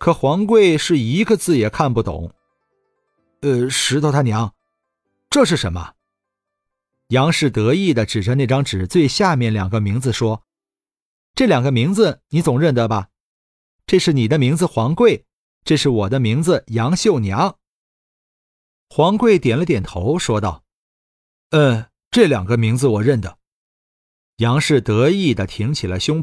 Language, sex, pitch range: Chinese, male, 105-165 Hz